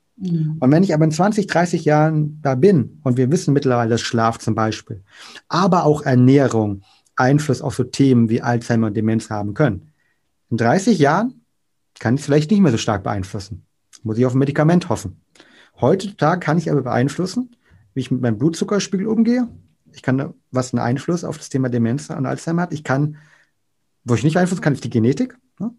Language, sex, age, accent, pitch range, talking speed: German, male, 30-49, German, 115-155 Hz, 195 wpm